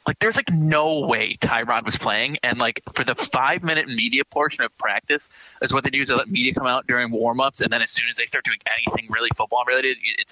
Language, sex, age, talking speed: English, male, 20-39, 240 wpm